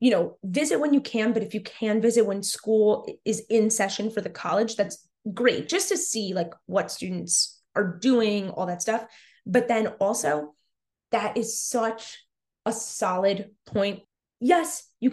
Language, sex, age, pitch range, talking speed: English, female, 20-39, 200-260 Hz, 170 wpm